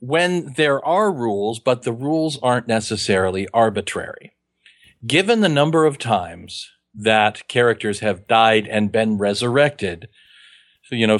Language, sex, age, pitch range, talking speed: English, male, 40-59, 105-155 Hz, 130 wpm